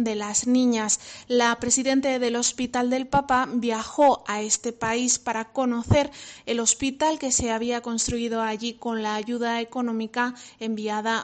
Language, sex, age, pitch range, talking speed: Spanish, female, 20-39, 210-245 Hz, 145 wpm